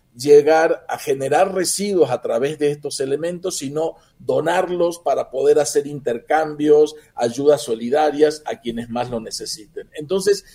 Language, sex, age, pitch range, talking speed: Spanish, male, 50-69, 145-200 Hz, 130 wpm